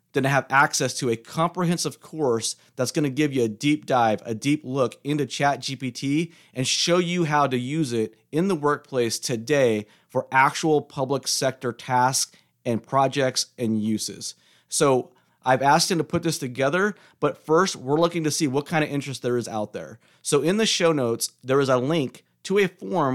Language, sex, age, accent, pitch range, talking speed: English, male, 30-49, American, 120-155 Hz, 190 wpm